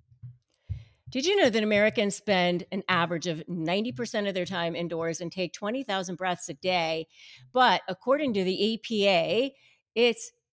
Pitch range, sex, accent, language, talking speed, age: 180-215 Hz, female, American, English, 150 wpm, 50-69